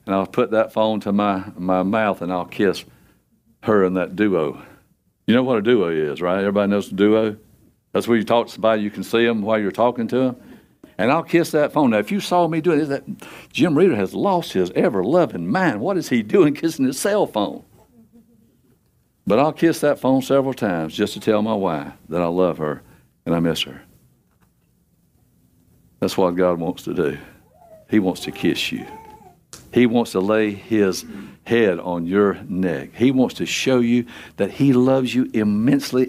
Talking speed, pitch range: 200 wpm, 90-125 Hz